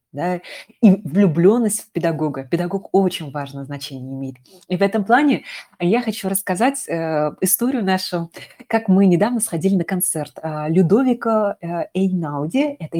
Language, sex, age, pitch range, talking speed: Russian, female, 20-39, 155-195 Hz, 135 wpm